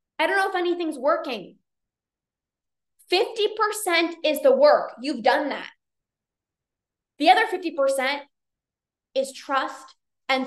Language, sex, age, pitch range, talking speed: English, female, 20-39, 265-330 Hz, 110 wpm